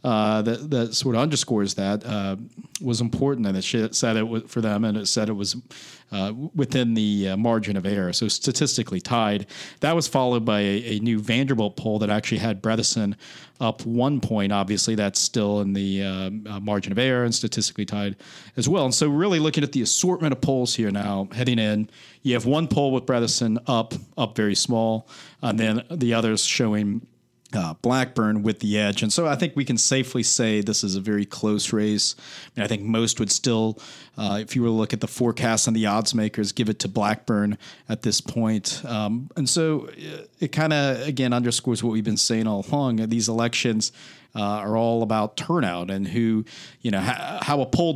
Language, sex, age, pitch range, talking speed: English, male, 40-59, 105-125 Hz, 210 wpm